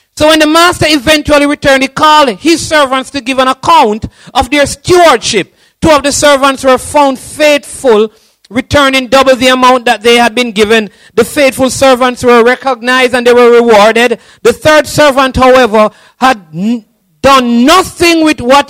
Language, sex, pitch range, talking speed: English, male, 230-285 Hz, 165 wpm